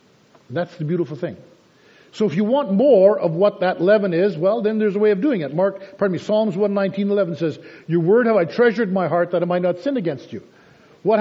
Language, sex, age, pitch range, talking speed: English, male, 50-69, 175-220 Hz, 240 wpm